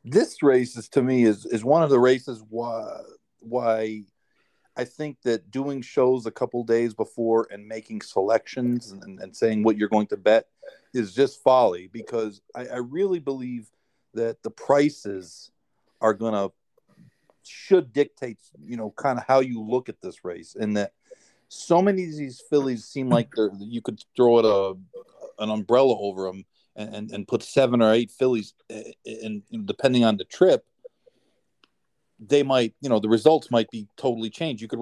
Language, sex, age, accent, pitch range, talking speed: English, male, 40-59, American, 110-135 Hz, 180 wpm